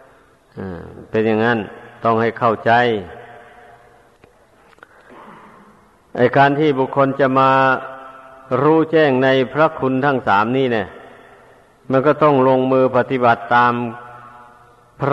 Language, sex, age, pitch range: Thai, male, 50-69, 115-140 Hz